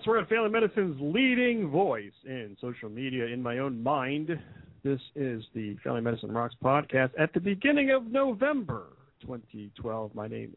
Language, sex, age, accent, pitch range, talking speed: English, male, 40-59, American, 110-150 Hz, 160 wpm